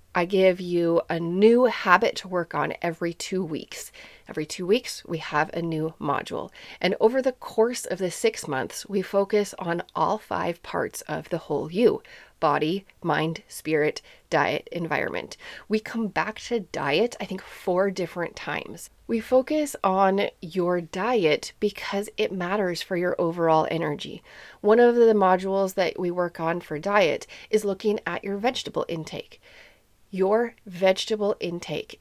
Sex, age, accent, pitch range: female, 30-49, American, 170-225 Hz